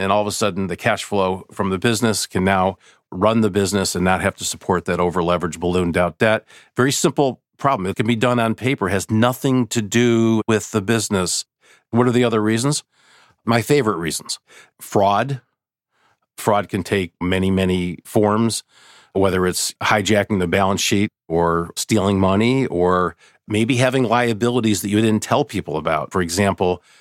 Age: 50-69